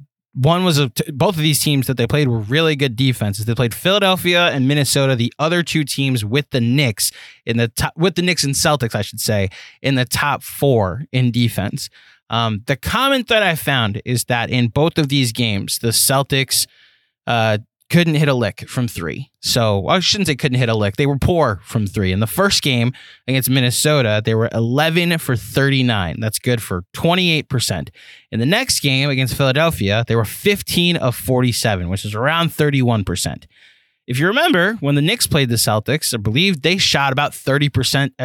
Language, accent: English, American